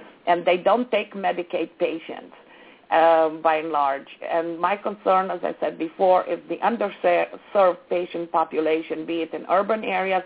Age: 50-69